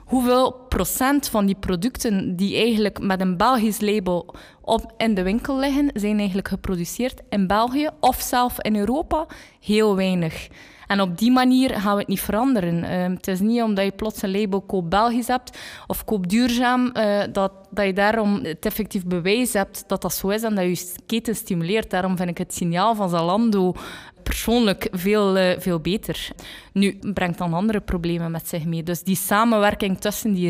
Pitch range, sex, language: 185-230 Hz, female, Dutch